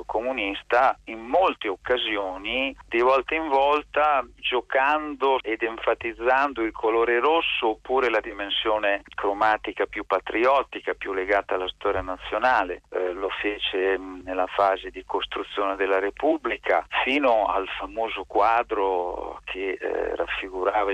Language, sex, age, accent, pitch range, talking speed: Italian, male, 50-69, native, 95-125 Hz, 120 wpm